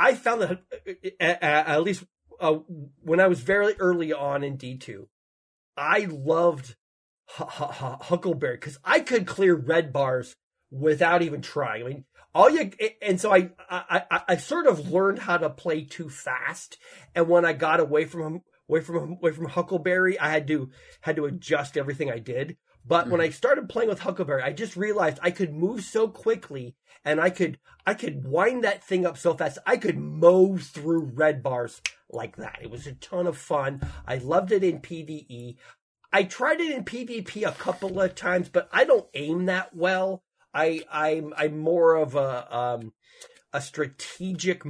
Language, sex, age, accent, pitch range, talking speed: English, male, 30-49, American, 145-185 Hz, 185 wpm